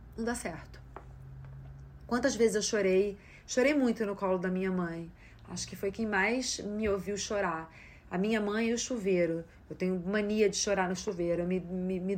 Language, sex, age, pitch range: Portuguese, female, 30-49, 185-225 Hz